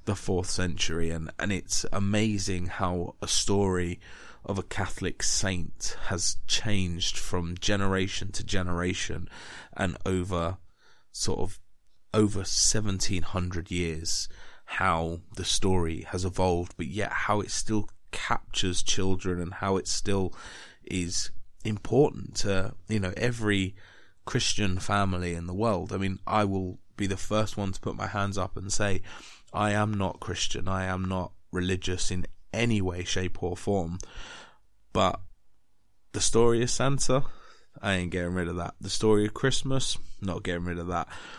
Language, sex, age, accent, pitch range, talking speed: English, male, 20-39, British, 90-100 Hz, 150 wpm